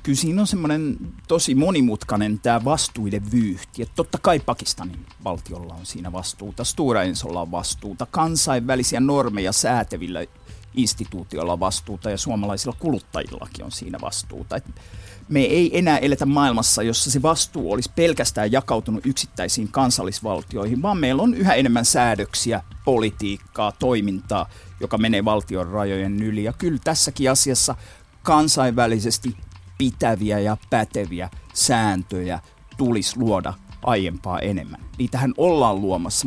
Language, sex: Finnish, male